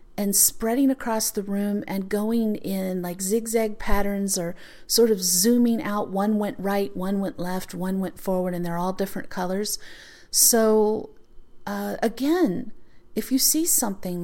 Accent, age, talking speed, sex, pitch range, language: American, 40-59, 155 wpm, female, 190-240 Hz, English